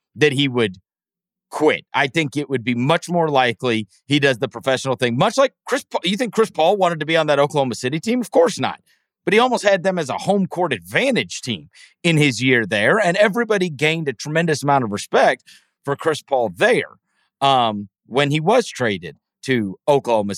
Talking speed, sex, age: 205 wpm, male, 40-59